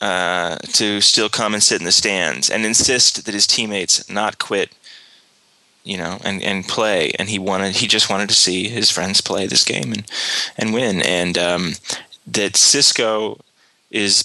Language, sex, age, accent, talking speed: English, male, 20-39, American, 175 wpm